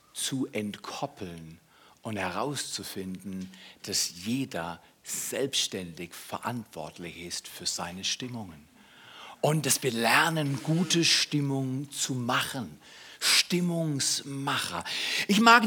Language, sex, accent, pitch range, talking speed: German, male, German, 100-165 Hz, 90 wpm